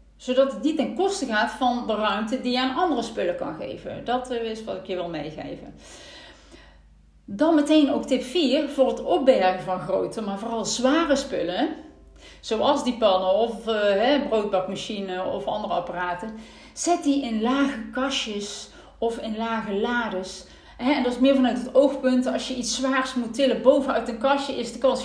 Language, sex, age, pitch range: Dutch, female, 40-59, 195-255 Hz